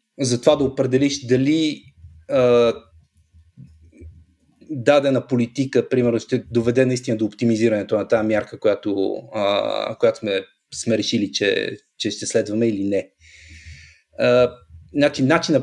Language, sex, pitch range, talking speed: Bulgarian, male, 110-135 Hz, 115 wpm